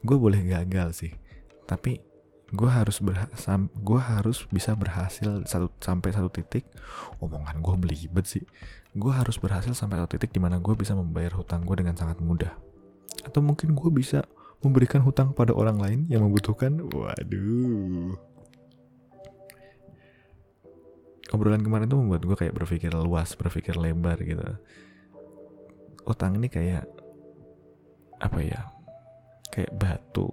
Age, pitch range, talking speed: 20-39, 85-120 Hz, 135 wpm